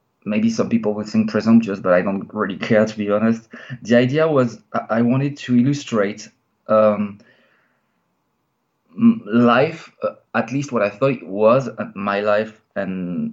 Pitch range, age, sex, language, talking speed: 105-130 Hz, 20-39, male, English, 160 wpm